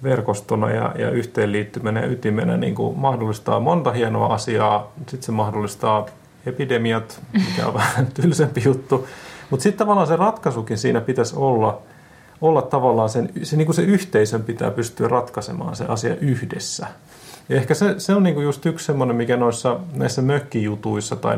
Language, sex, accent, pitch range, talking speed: Finnish, male, native, 115-155 Hz, 165 wpm